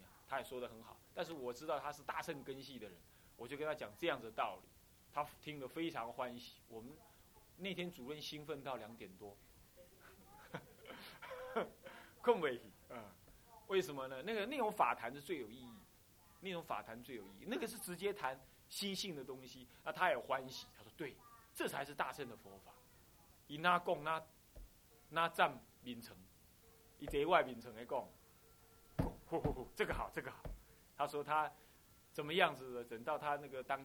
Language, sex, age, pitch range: Chinese, male, 30-49, 120-185 Hz